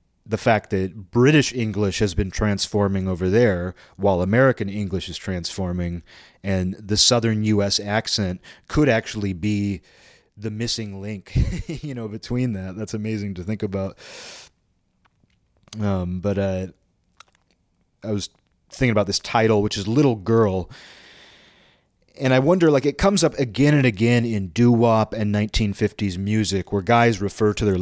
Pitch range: 100-130 Hz